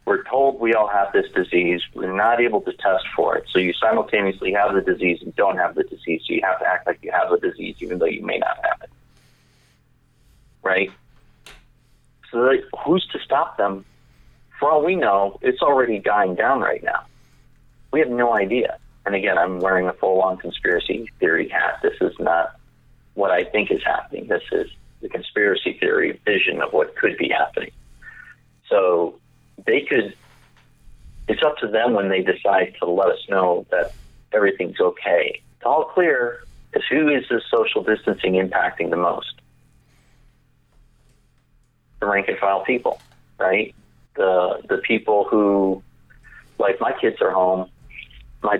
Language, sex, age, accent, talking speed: English, male, 30-49, American, 165 wpm